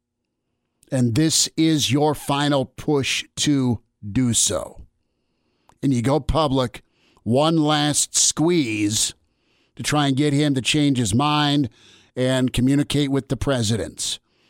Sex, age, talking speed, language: male, 50-69, 125 wpm, English